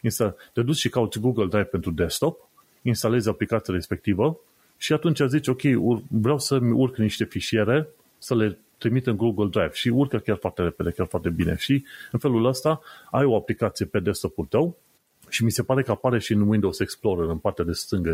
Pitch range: 105-130 Hz